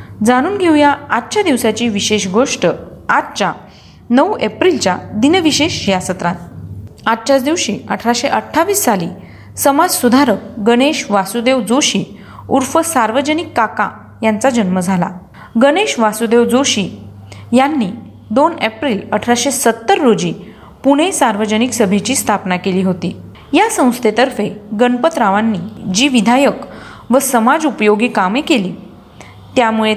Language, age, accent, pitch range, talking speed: Marathi, 30-49, native, 205-270 Hz, 95 wpm